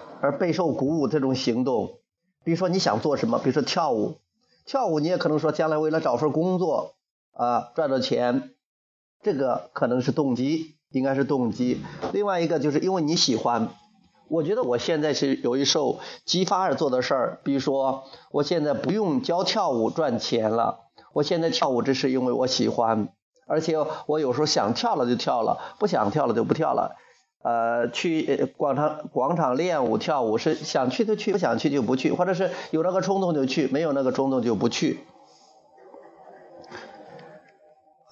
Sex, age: male, 30-49